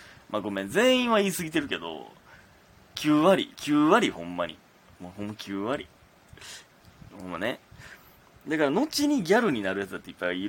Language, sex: Japanese, male